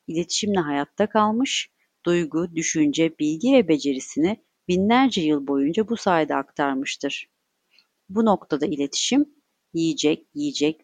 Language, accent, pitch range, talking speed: Turkish, native, 150-220 Hz, 105 wpm